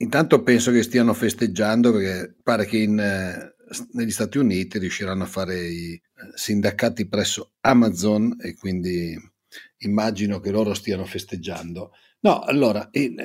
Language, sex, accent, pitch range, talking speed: Italian, male, native, 95-130 Hz, 140 wpm